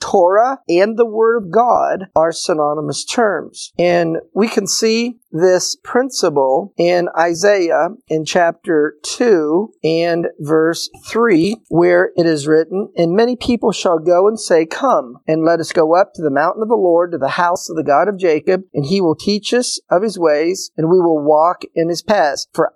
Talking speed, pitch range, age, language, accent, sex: 185 wpm, 160-210 Hz, 50-69, English, American, male